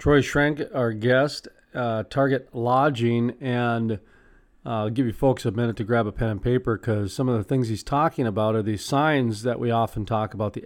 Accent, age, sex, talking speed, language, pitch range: American, 40-59, male, 215 wpm, English, 120-140 Hz